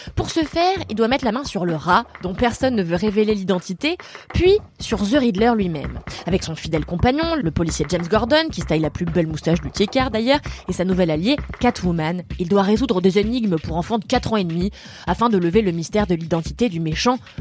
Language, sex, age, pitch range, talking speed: French, female, 20-39, 185-265 Hz, 225 wpm